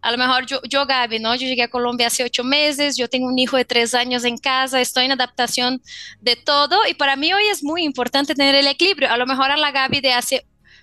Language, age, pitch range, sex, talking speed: Spanish, 20-39, 240-275 Hz, female, 255 wpm